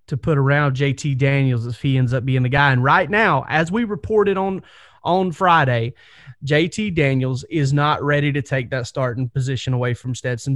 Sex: male